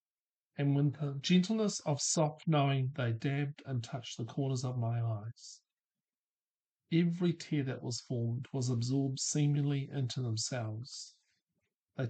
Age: 50-69